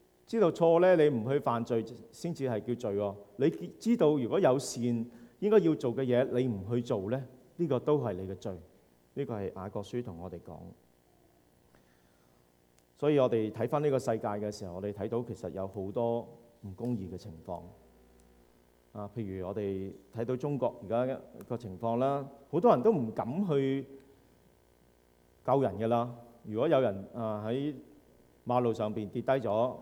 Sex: male